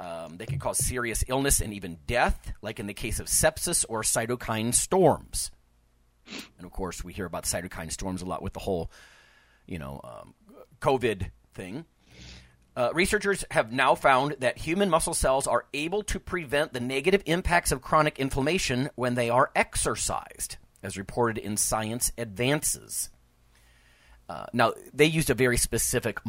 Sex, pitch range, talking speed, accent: male, 90-140 Hz, 160 wpm, American